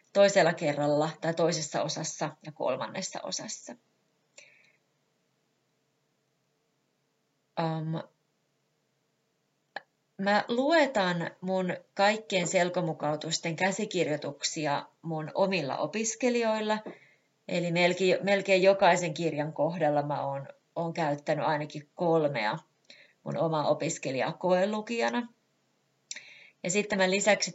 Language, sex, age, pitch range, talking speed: Finnish, female, 30-49, 155-195 Hz, 80 wpm